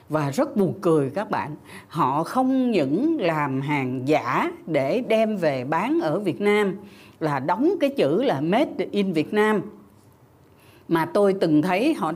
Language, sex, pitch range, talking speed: Vietnamese, female, 150-245 Hz, 165 wpm